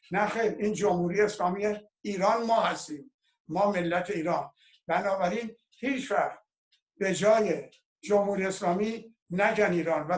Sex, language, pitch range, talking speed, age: male, Persian, 180-225 Hz, 120 wpm, 60-79